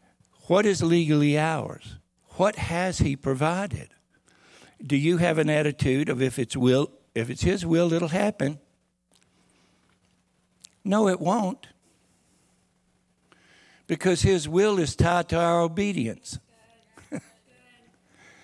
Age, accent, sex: 60-79, American, male